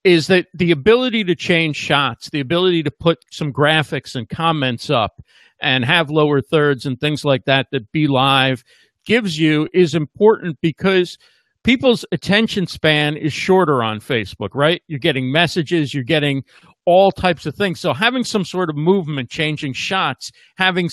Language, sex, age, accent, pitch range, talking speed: English, male, 50-69, American, 145-180 Hz, 165 wpm